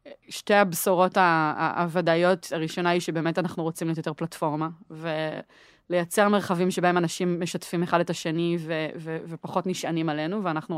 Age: 20-39